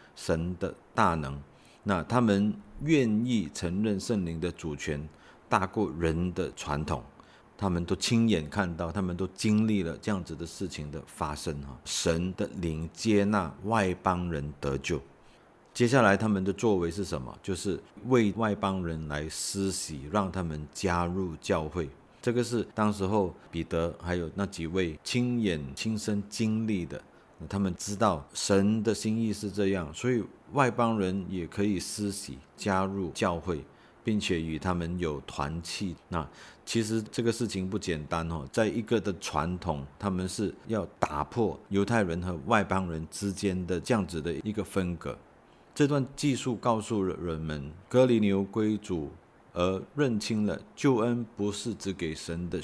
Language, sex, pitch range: Chinese, male, 80-105 Hz